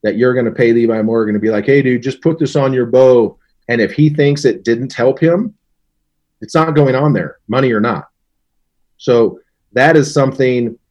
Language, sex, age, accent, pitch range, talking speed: English, male, 30-49, American, 105-125 Hz, 210 wpm